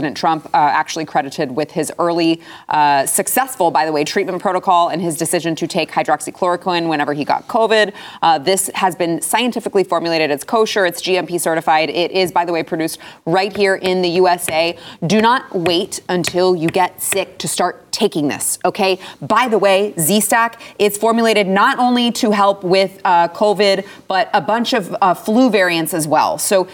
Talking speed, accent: 180 wpm, American